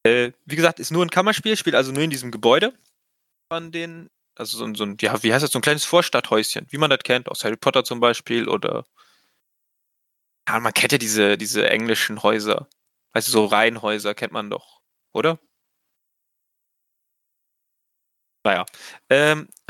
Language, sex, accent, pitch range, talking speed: German, male, German, 125-160 Hz, 170 wpm